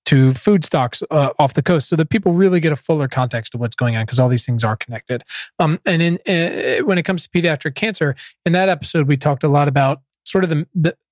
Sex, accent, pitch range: male, American, 135-170 Hz